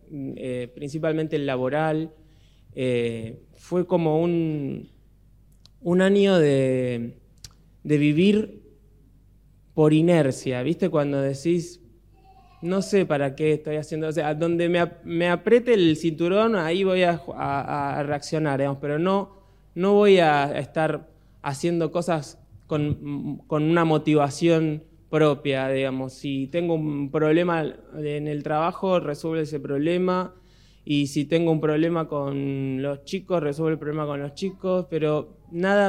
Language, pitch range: Spanish, 140-170 Hz